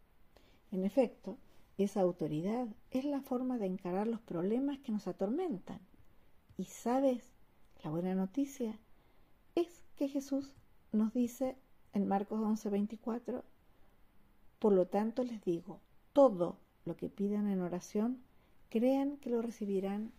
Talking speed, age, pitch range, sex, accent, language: 130 wpm, 50-69, 185-240 Hz, female, American, Spanish